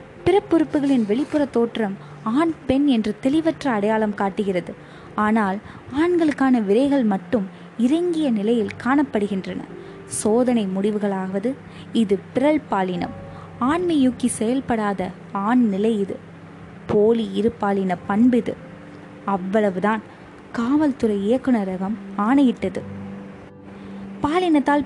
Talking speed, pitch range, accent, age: 85 wpm, 200-265 Hz, native, 20-39